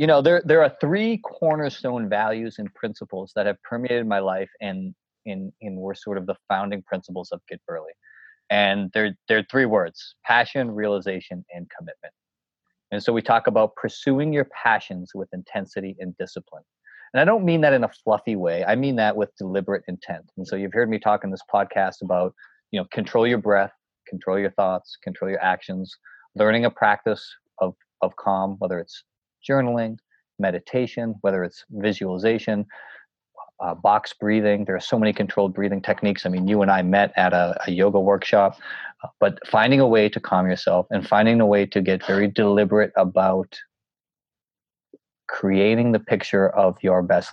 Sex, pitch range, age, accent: male, 95-115 Hz, 30-49, American